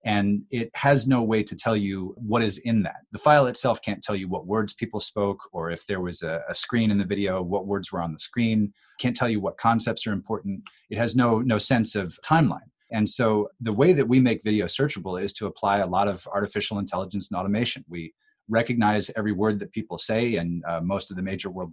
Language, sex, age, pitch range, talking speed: English, male, 30-49, 95-120 Hz, 235 wpm